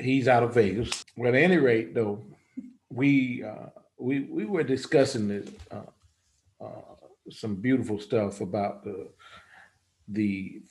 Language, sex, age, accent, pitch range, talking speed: English, male, 50-69, American, 95-120 Hz, 135 wpm